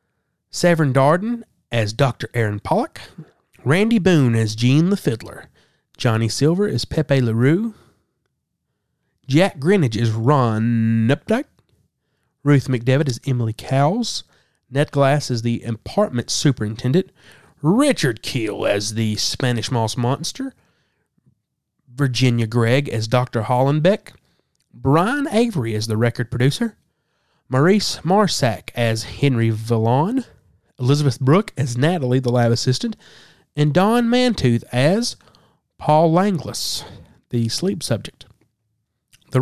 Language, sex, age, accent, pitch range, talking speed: English, male, 30-49, American, 120-160 Hz, 110 wpm